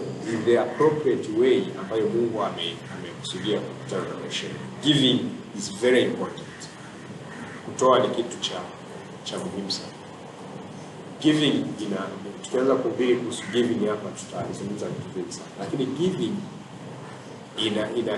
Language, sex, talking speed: Swahili, male, 100 wpm